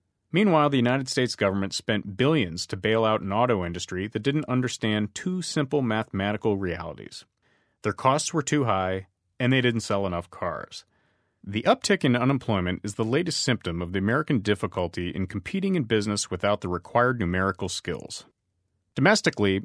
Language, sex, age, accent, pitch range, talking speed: English, male, 30-49, American, 100-140 Hz, 160 wpm